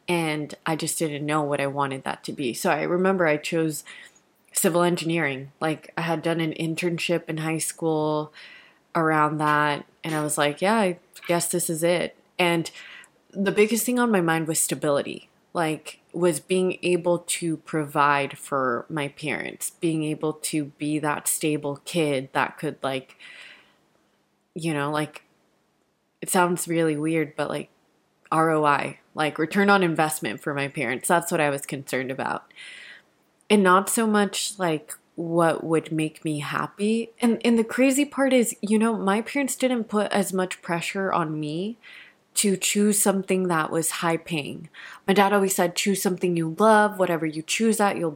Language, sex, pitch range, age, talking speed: English, female, 155-195 Hz, 20-39, 170 wpm